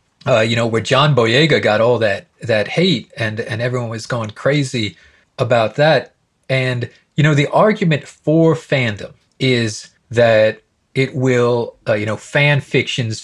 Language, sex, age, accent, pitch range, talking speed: English, male, 40-59, American, 110-140 Hz, 160 wpm